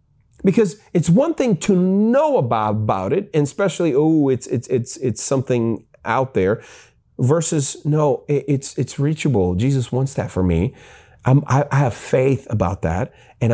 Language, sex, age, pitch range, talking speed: English, male, 30-49, 125-170 Hz, 170 wpm